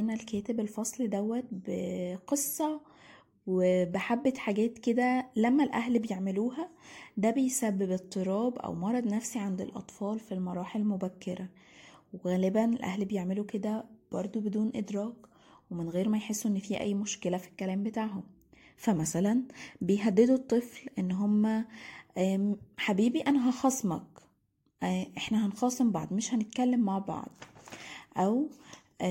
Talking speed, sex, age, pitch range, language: 115 wpm, female, 20-39, 195-245 Hz, Arabic